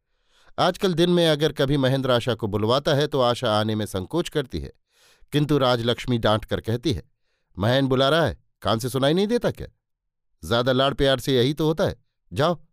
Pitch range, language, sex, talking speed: 115-140 Hz, Hindi, male, 200 wpm